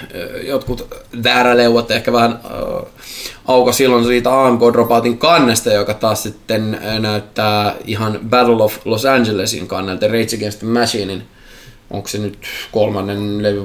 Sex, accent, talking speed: male, native, 130 wpm